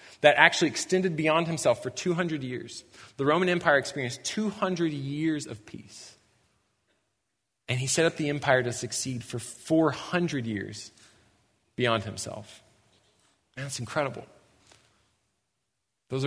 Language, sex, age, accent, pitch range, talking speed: English, male, 20-39, American, 110-140 Hz, 135 wpm